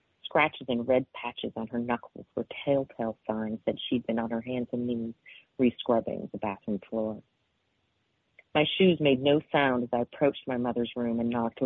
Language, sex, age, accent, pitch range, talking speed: English, female, 40-59, American, 120-135 Hz, 180 wpm